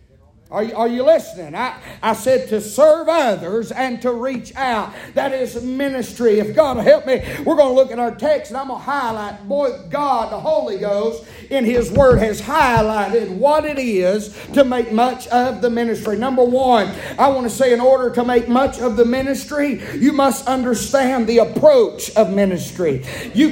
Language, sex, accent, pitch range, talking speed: English, male, American, 240-290 Hz, 195 wpm